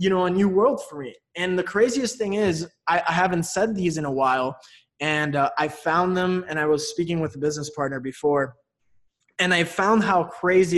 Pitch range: 140-180 Hz